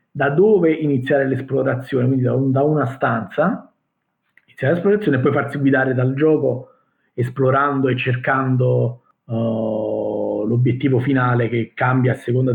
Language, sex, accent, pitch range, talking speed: Italian, male, native, 120-140 Hz, 135 wpm